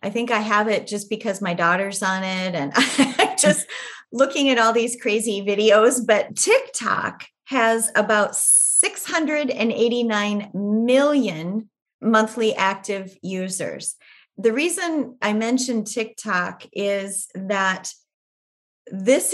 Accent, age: American, 30-49